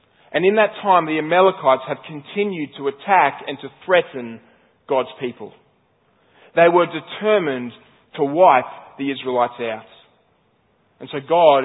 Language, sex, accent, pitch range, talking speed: English, male, Australian, 140-180 Hz, 135 wpm